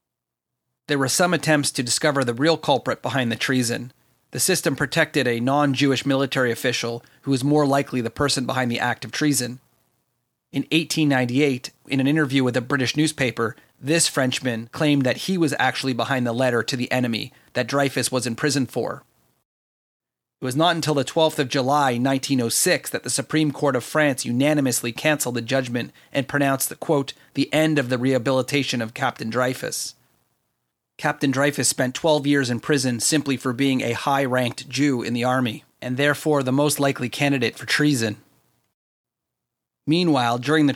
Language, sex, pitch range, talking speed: English, male, 125-145 Hz, 170 wpm